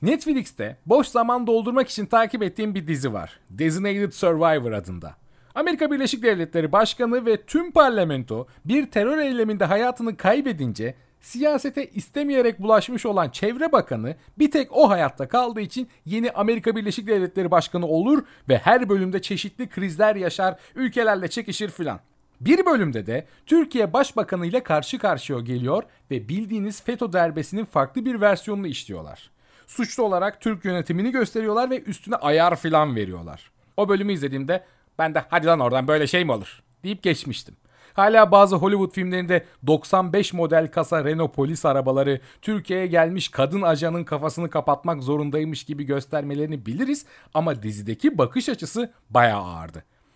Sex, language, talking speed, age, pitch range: male, Turkish, 140 wpm, 40-59, 150-230 Hz